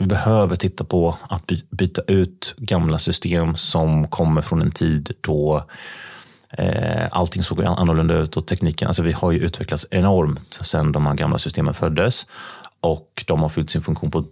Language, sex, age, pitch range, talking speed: Swedish, male, 30-49, 80-95 Hz, 170 wpm